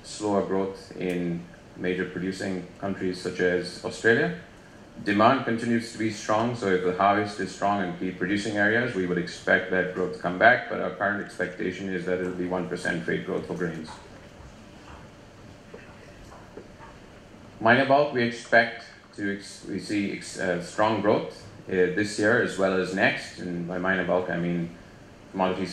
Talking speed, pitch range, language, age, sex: 165 wpm, 90-105 Hz, English, 30-49, male